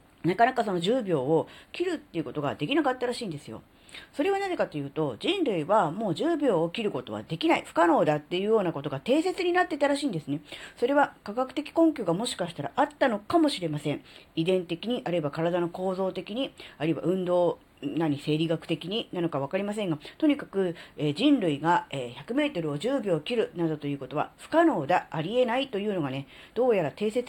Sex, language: female, Japanese